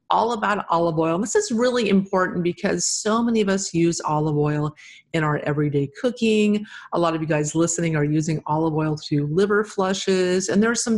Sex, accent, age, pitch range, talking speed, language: female, American, 40-59, 170-210 Hz, 200 wpm, English